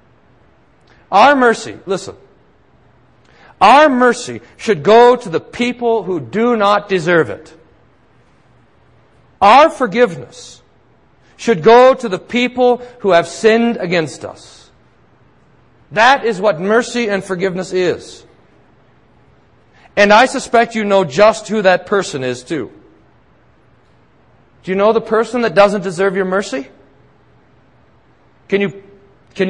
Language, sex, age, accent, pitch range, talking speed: English, male, 40-59, American, 180-235 Hz, 120 wpm